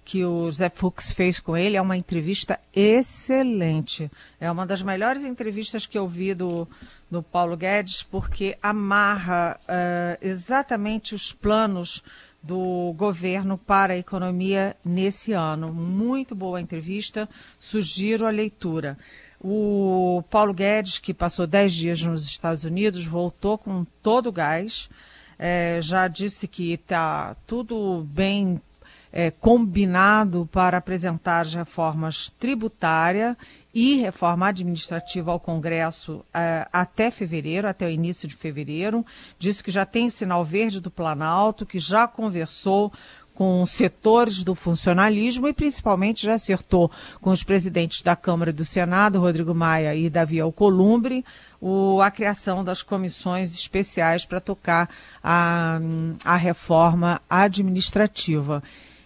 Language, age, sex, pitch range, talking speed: Portuguese, 50-69, female, 170-205 Hz, 125 wpm